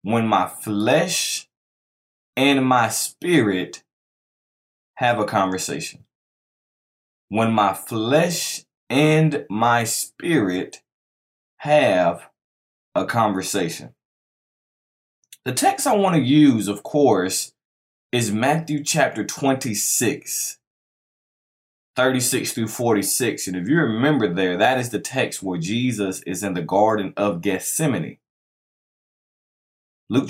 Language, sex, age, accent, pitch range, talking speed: English, male, 20-39, American, 95-135 Hz, 100 wpm